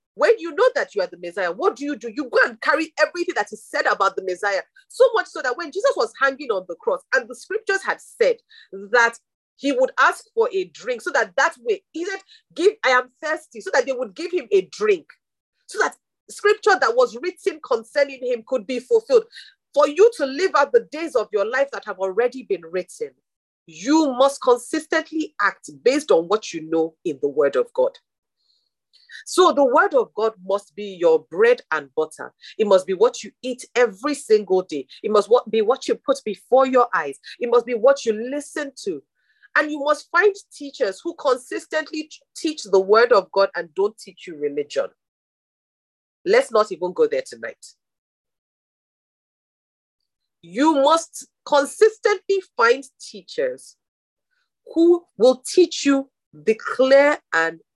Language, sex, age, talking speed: English, female, 40-59, 180 wpm